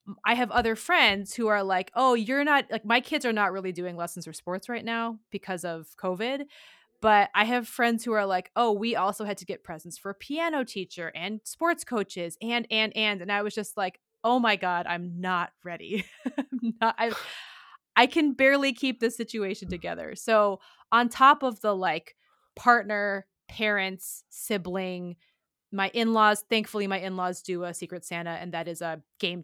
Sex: female